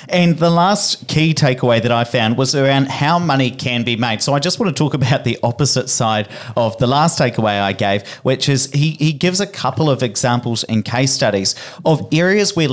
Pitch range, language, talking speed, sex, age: 115-140 Hz, English, 215 wpm, male, 40-59